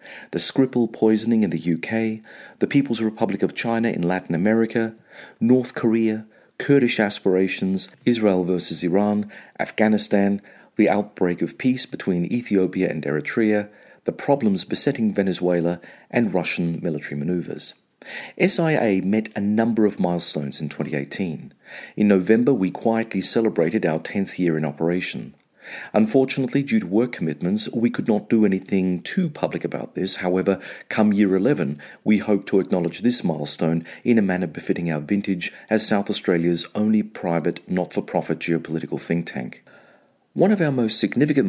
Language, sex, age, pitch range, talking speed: English, male, 40-59, 85-110 Hz, 145 wpm